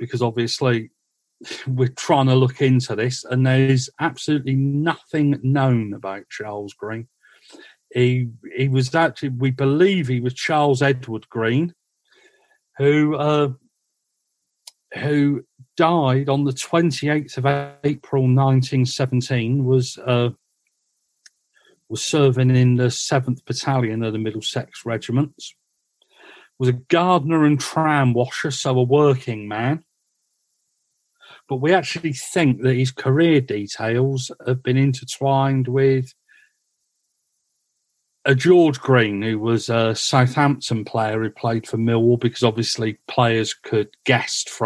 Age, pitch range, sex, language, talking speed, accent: 40-59, 115-140 Hz, male, English, 120 wpm, British